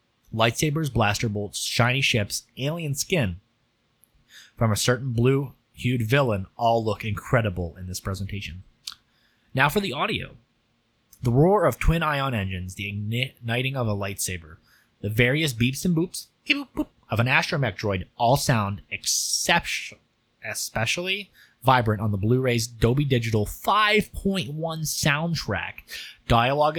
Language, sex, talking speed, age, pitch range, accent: English, male, 125 wpm, 20-39, 105-135 Hz, American